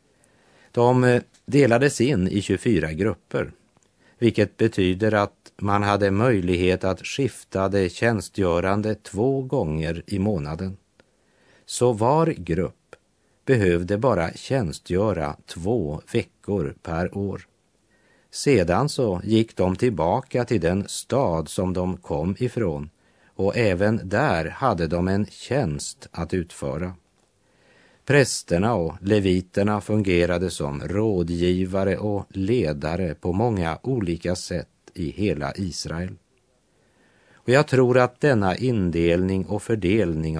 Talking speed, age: 110 wpm, 50-69